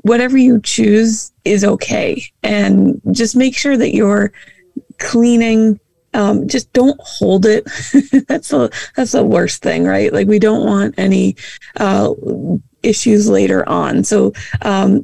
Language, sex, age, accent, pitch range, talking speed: English, female, 30-49, American, 175-220 Hz, 140 wpm